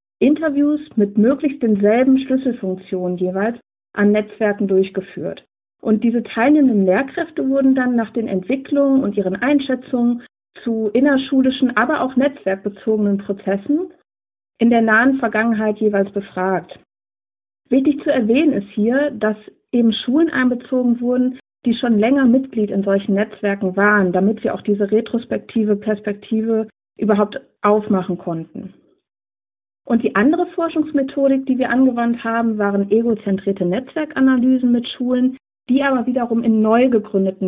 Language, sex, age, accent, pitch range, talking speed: German, female, 50-69, German, 200-260 Hz, 125 wpm